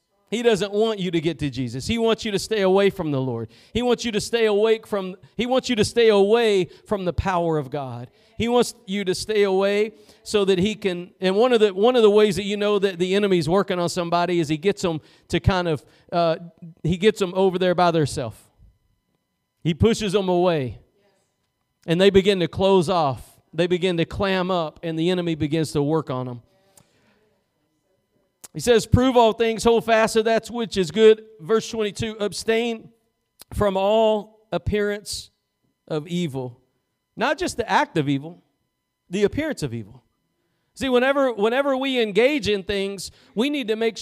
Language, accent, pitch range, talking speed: English, American, 165-220 Hz, 190 wpm